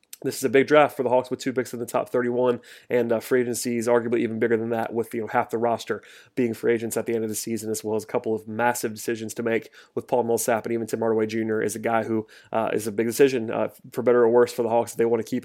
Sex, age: male, 30-49